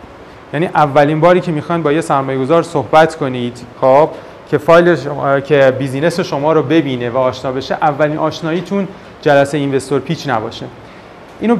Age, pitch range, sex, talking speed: 30-49, 135-180 Hz, male, 140 wpm